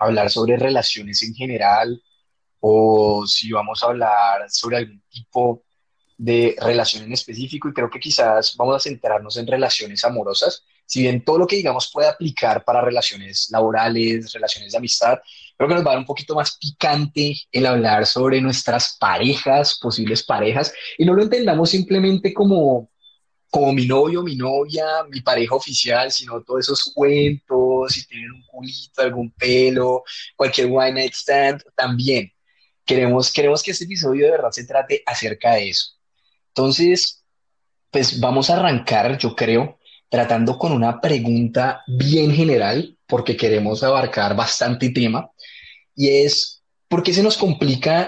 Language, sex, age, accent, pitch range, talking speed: Spanish, male, 20-39, Colombian, 120-145 Hz, 155 wpm